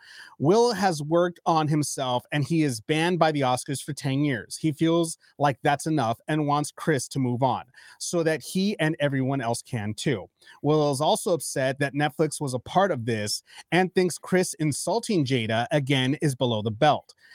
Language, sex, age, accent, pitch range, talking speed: English, male, 30-49, American, 135-175 Hz, 190 wpm